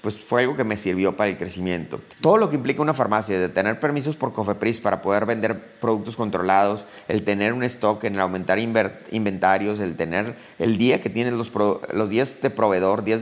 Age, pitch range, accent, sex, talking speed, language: 30-49, 105-125 Hz, Mexican, male, 205 wpm, Spanish